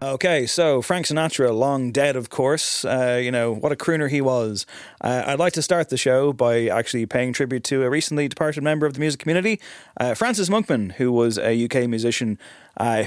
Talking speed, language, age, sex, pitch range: 205 wpm, English, 20-39, male, 115-150 Hz